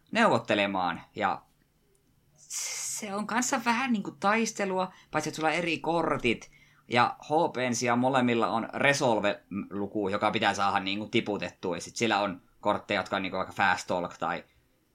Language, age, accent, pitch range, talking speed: Finnish, 20-39, native, 100-125 Hz, 150 wpm